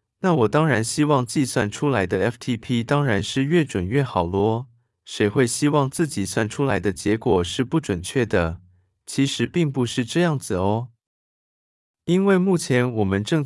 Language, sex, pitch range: Chinese, male, 100-145 Hz